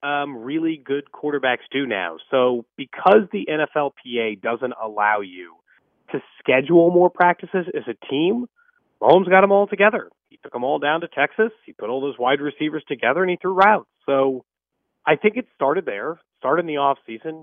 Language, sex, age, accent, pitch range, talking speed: English, male, 30-49, American, 130-195 Hz, 185 wpm